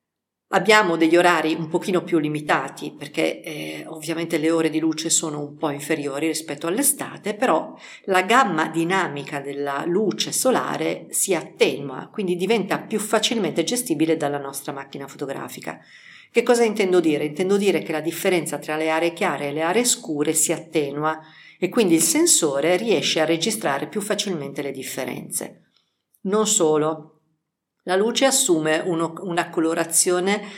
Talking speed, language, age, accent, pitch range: 150 wpm, Italian, 50-69, native, 150-185 Hz